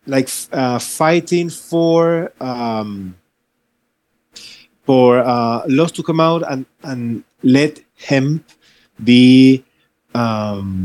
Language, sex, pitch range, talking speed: English, male, 120-155 Hz, 95 wpm